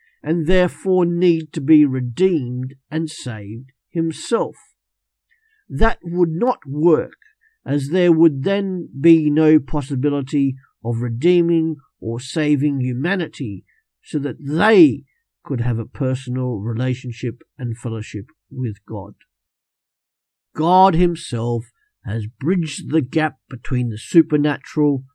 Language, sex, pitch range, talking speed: English, male, 120-160 Hz, 110 wpm